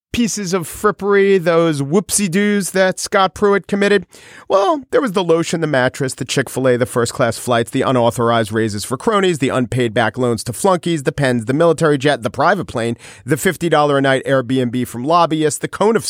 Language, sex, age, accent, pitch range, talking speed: English, male, 40-59, American, 125-200 Hz, 175 wpm